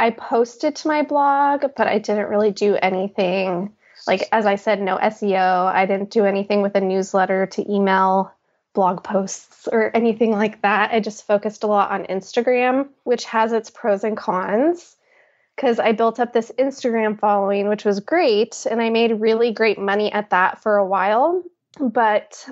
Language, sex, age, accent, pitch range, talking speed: English, female, 20-39, American, 200-235 Hz, 180 wpm